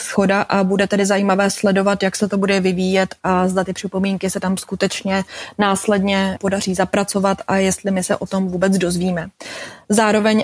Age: 20-39